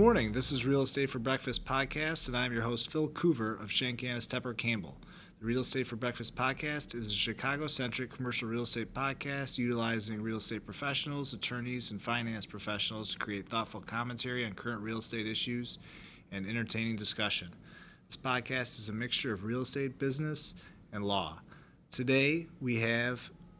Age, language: 30-49, English